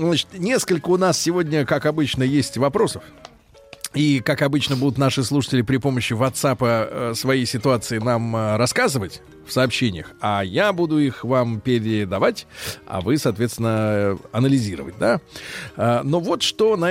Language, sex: Russian, male